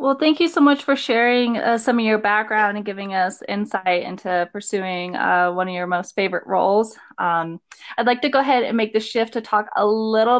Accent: American